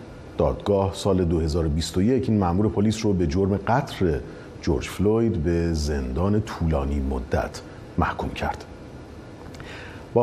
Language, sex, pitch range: Persian, male, 85-115 Hz